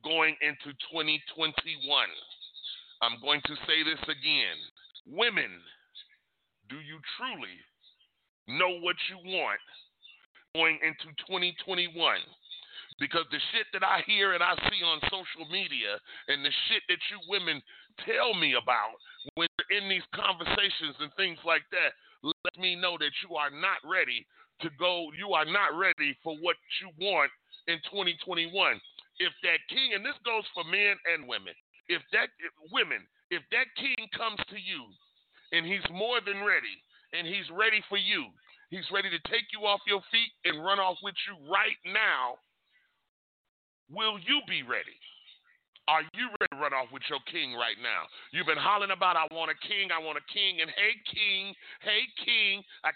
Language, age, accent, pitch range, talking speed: English, 40-59, American, 165-215 Hz, 170 wpm